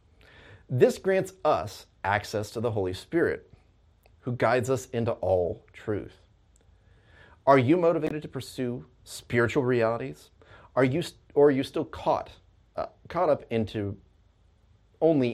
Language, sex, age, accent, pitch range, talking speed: English, male, 30-49, American, 95-130 Hz, 135 wpm